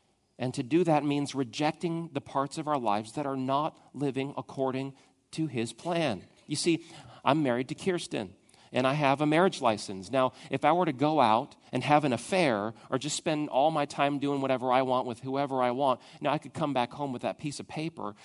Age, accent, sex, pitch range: 40-59, American, male, 125-155 Hz